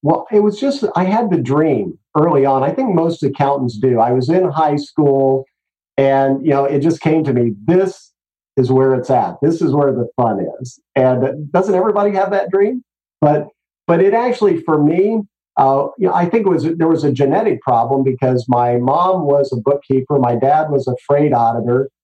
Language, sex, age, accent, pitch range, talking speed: English, male, 50-69, American, 125-160 Hz, 205 wpm